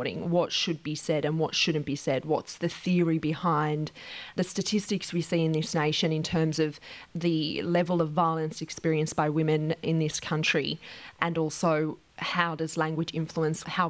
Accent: Australian